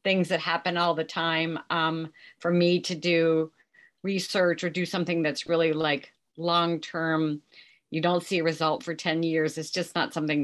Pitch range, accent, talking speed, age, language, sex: 155-180 Hz, American, 180 wpm, 40-59, English, female